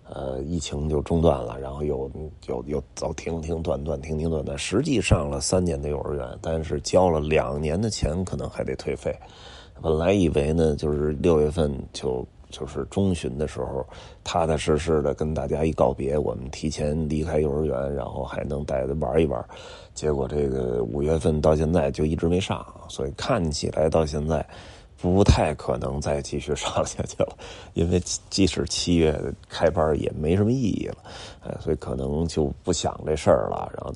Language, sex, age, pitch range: Chinese, male, 30-49, 75-85 Hz